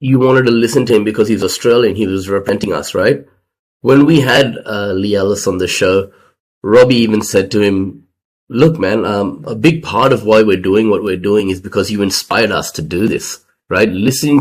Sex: male